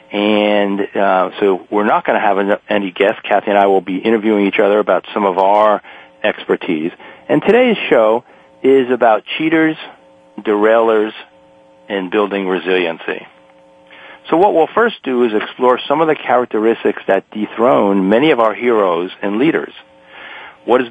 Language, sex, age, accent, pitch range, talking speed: English, male, 40-59, American, 95-120 Hz, 150 wpm